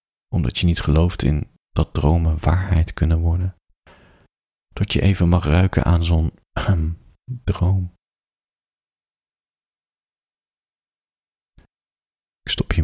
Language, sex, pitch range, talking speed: Dutch, male, 85-105 Hz, 105 wpm